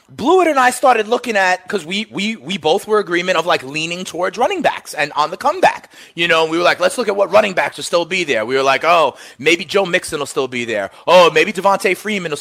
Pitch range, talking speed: 175-265 Hz, 260 wpm